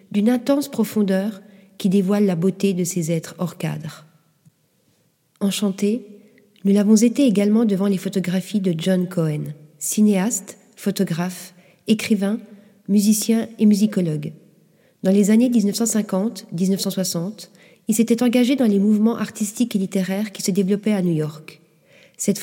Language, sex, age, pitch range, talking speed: French, female, 40-59, 180-220 Hz, 130 wpm